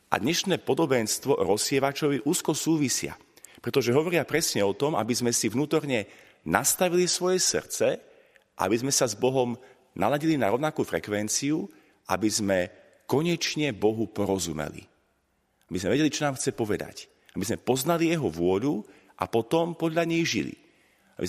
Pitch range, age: 105-155 Hz, 40-59